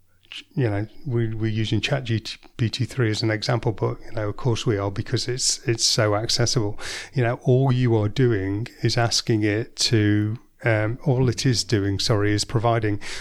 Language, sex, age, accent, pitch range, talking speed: English, male, 30-49, British, 105-120 Hz, 200 wpm